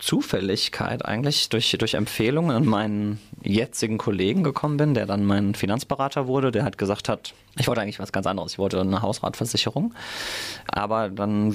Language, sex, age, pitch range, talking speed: German, male, 20-39, 100-115 Hz, 165 wpm